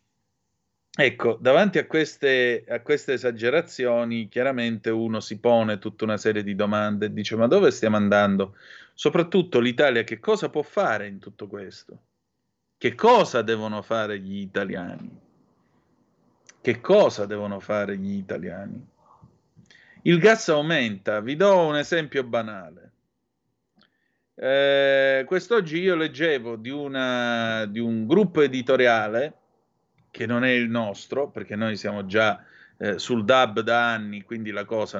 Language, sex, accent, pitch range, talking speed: Italian, male, native, 110-155 Hz, 130 wpm